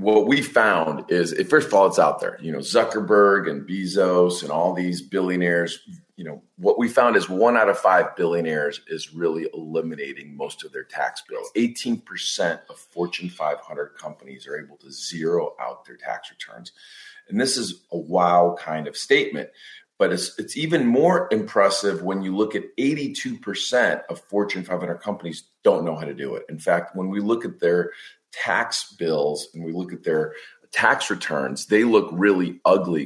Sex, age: male, 40-59